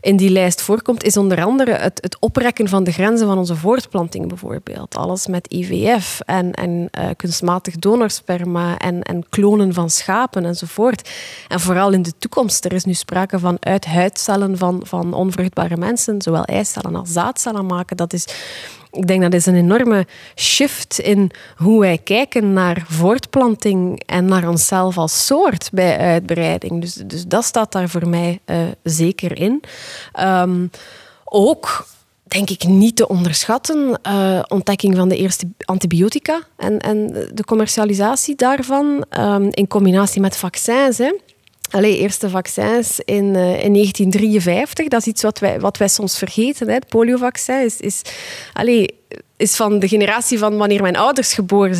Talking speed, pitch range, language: 160 wpm, 180-215 Hz, Dutch